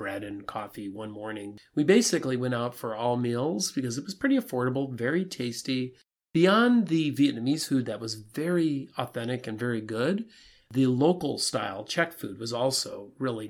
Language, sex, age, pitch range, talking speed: English, male, 40-59, 120-160 Hz, 170 wpm